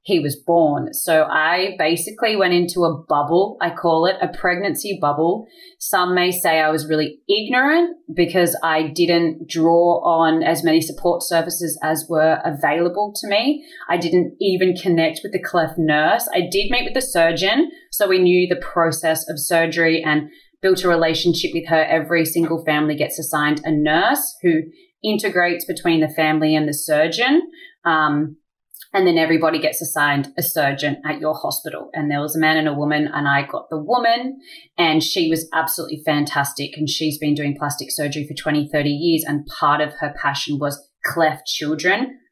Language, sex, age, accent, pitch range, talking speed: English, female, 20-39, Australian, 155-195 Hz, 180 wpm